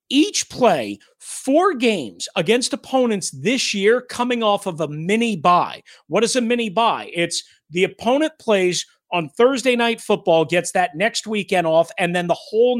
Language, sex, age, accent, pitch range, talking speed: English, male, 40-59, American, 170-235 Hz, 160 wpm